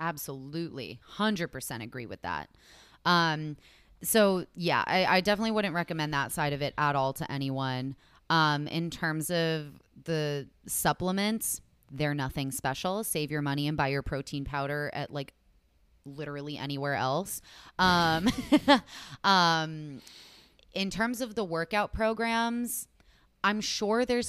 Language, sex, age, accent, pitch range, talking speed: English, female, 20-39, American, 145-195 Hz, 135 wpm